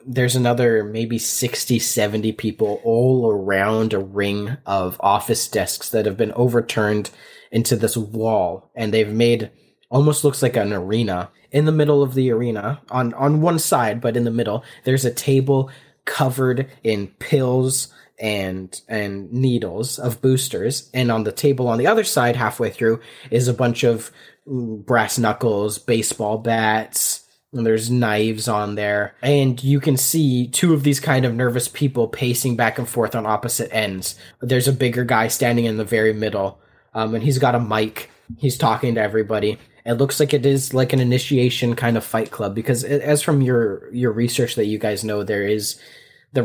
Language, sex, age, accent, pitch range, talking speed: English, male, 20-39, American, 110-130 Hz, 180 wpm